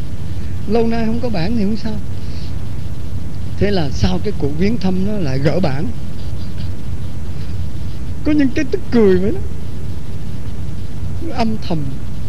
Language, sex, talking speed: Vietnamese, male, 135 wpm